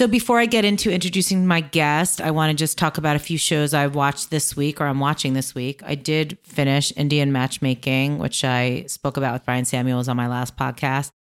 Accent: American